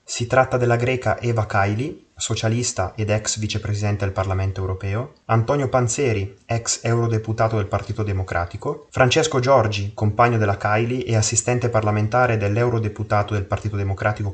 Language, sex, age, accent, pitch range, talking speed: Italian, male, 20-39, native, 105-125 Hz, 135 wpm